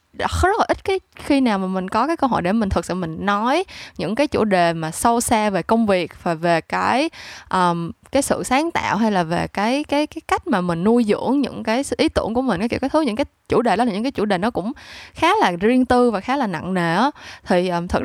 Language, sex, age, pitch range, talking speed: Vietnamese, female, 10-29, 190-265 Hz, 265 wpm